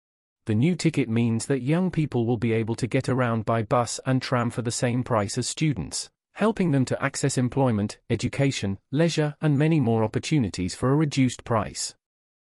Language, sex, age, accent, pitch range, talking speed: English, male, 40-59, British, 110-140 Hz, 185 wpm